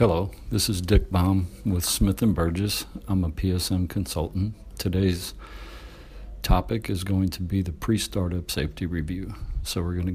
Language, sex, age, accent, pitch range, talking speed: English, male, 60-79, American, 80-95 Hz, 155 wpm